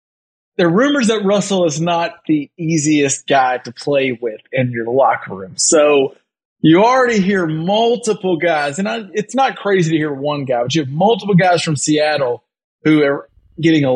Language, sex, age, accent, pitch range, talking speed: English, male, 20-39, American, 150-185 Hz, 185 wpm